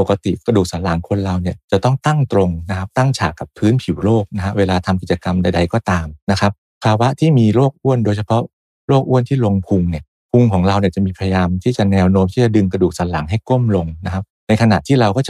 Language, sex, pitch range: Thai, male, 90-110 Hz